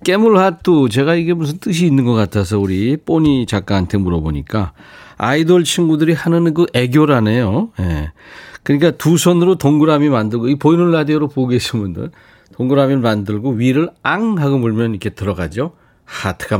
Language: Korean